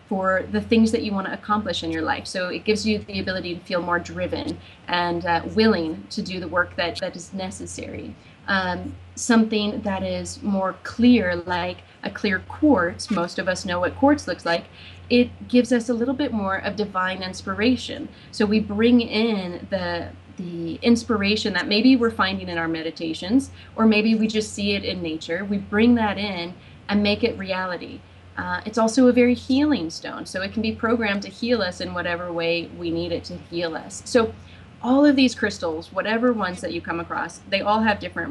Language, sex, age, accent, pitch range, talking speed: English, female, 30-49, American, 175-225 Hz, 200 wpm